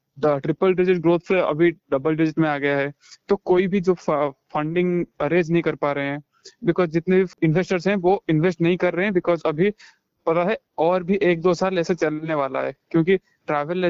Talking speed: 205 wpm